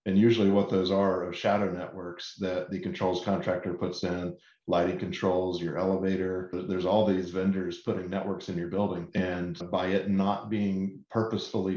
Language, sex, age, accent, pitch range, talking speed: English, male, 40-59, American, 95-100 Hz, 170 wpm